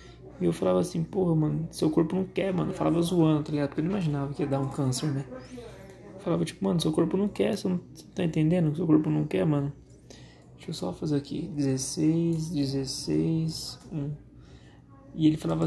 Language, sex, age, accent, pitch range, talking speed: Portuguese, male, 20-39, Brazilian, 140-160 Hz, 205 wpm